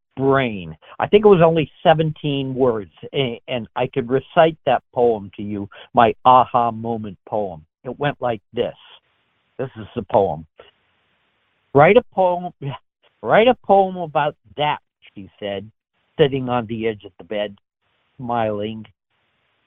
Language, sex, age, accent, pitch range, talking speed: English, male, 60-79, American, 115-170 Hz, 145 wpm